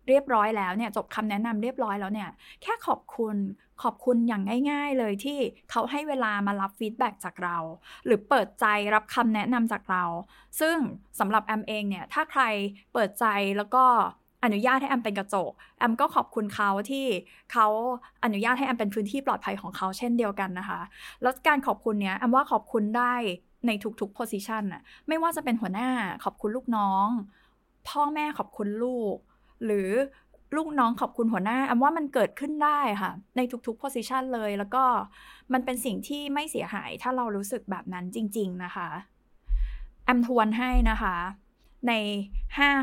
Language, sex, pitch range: Thai, female, 205-260 Hz